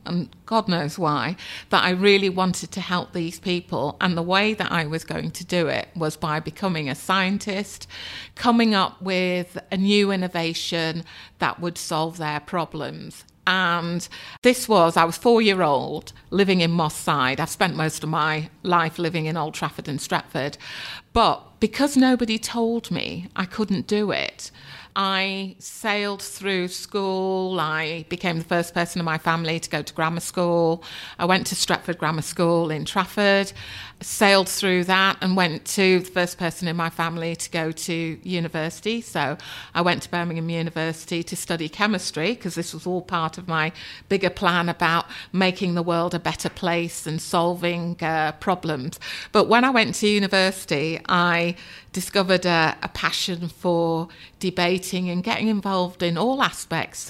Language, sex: English, female